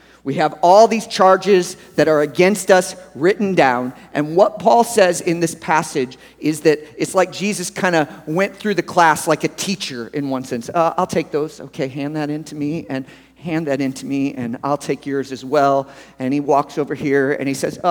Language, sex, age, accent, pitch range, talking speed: English, male, 40-59, American, 135-195 Hz, 220 wpm